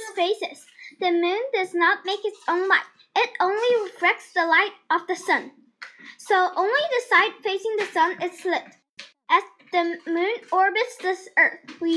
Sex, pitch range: female, 335-420 Hz